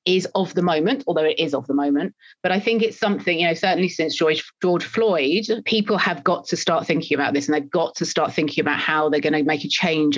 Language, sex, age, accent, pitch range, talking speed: English, female, 30-49, British, 155-190 Hz, 260 wpm